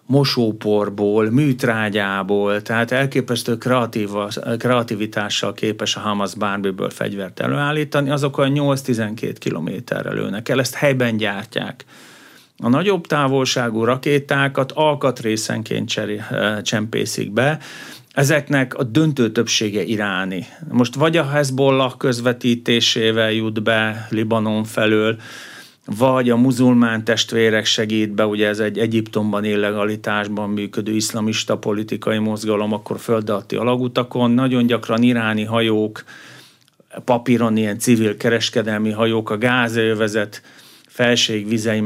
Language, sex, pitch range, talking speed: Hungarian, male, 110-125 Hz, 100 wpm